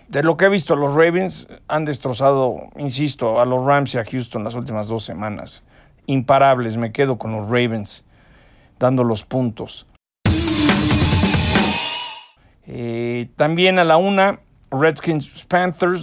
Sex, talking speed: male, 135 wpm